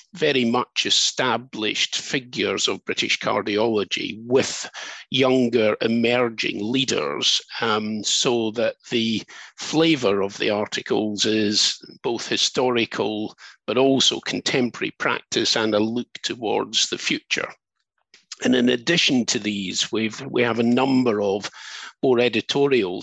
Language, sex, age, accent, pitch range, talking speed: English, male, 50-69, British, 105-130 Hz, 115 wpm